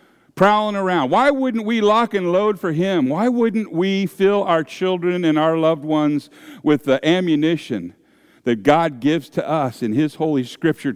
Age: 50-69